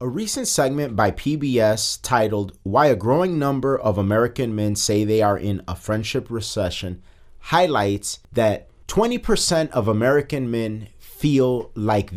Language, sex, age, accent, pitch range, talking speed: English, male, 30-49, American, 100-130 Hz, 140 wpm